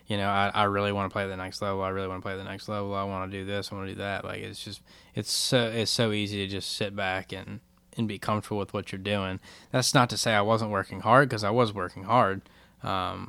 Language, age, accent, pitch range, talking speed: English, 10-29, American, 95-110 Hz, 285 wpm